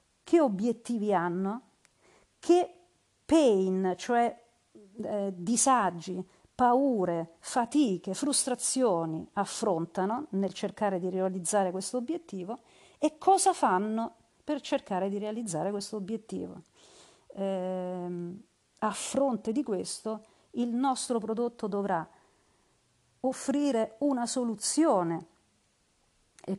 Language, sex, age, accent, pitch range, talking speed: Italian, female, 40-59, native, 190-250 Hz, 90 wpm